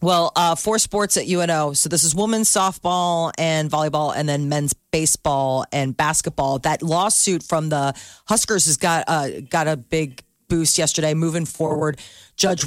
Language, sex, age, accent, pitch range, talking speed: English, female, 30-49, American, 155-190 Hz, 165 wpm